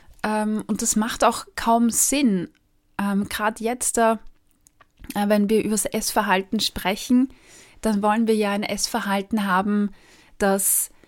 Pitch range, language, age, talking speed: 195-230 Hz, German, 20-39, 130 wpm